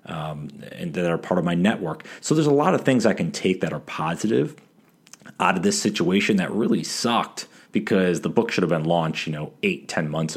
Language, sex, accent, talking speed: English, male, American, 225 wpm